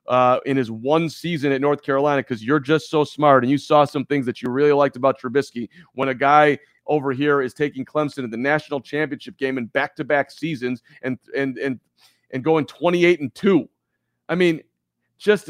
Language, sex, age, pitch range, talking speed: English, male, 40-59, 135-190 Hz, 200 wpm